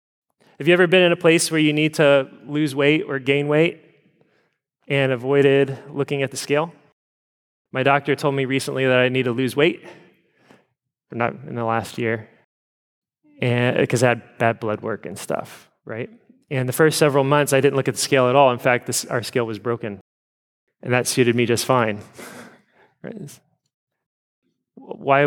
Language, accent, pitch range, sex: English, American, 130-165 Hz, male